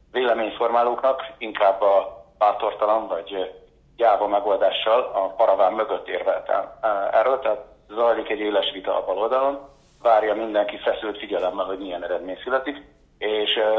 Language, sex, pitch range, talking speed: Hungarian, male, 100-120 Hz, 120 wpm